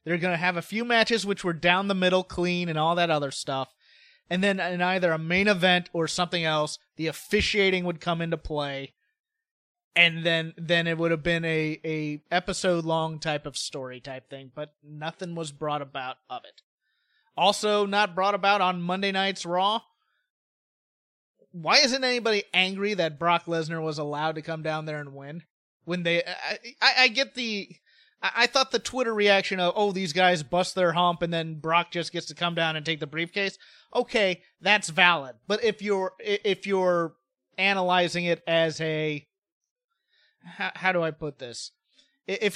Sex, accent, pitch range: male, American, 160-200 Hz